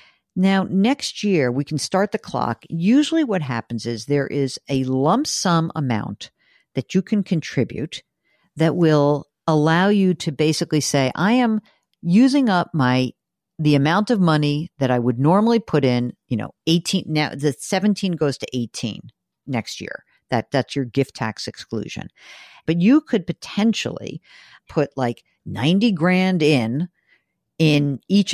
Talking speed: 150 wpm